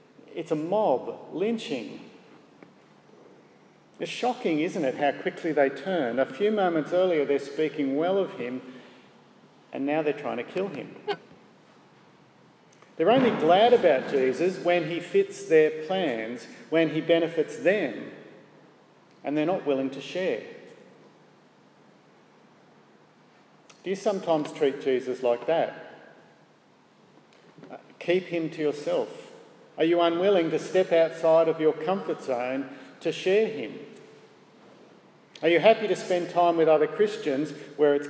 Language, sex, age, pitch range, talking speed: English, male, 50-69, 145-200 Hz, 130 wpm